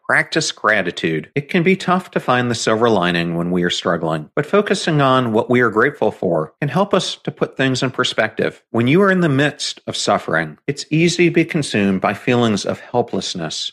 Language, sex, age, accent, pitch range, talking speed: English, male, 50-69, American, 100-150 Hz, 210 wpm